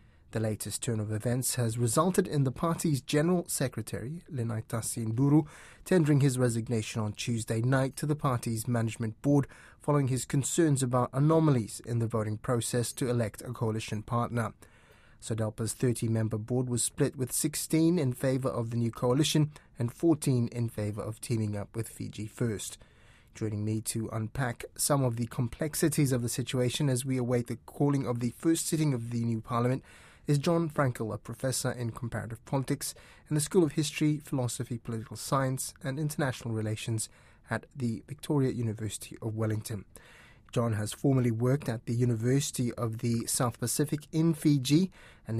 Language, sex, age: English, male, 30-49